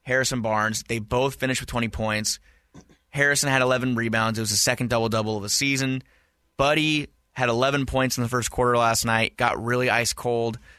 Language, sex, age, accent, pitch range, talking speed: English, male, 20-39, American, 115-140 Hz, 190 wpm